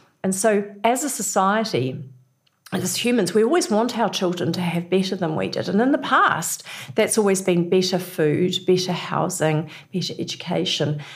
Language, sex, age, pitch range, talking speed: English, female, 50-69, 165-215 Hz, 165 wpm